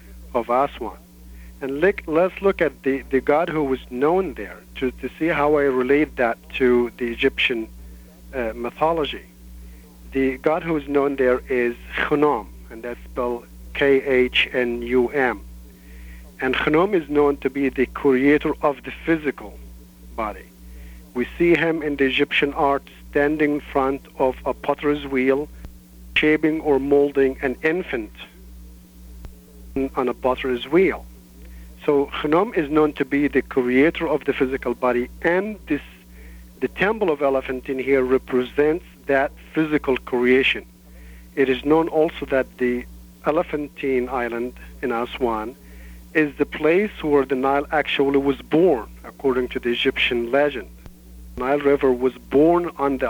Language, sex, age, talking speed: English, male, 50-69, 140 wpm